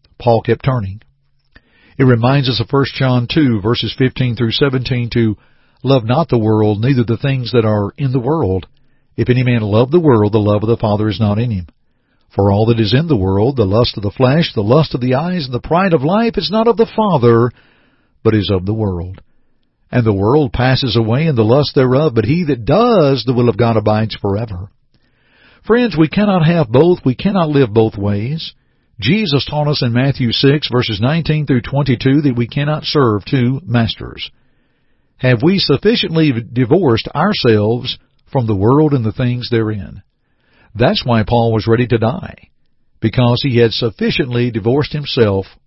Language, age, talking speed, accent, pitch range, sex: English, 60-79, 190 wpm, American, 115-145 Hz, male